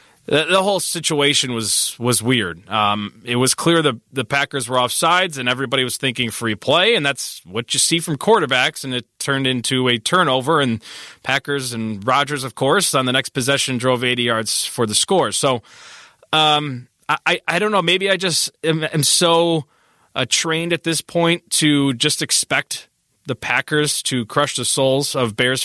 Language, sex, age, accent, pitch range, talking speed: English, male, 20-39, American, 125-165 Hz, 185 wpm